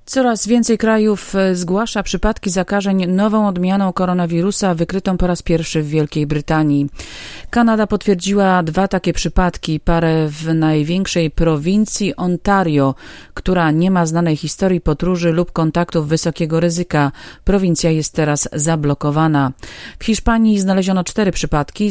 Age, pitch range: 30-49, 155-185 Hz